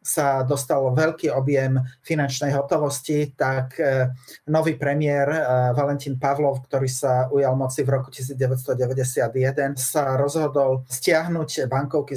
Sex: male